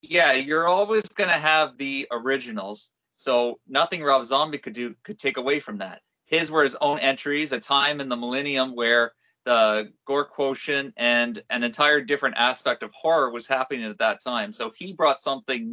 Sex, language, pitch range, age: male, English, 120-155 Hz, 30-49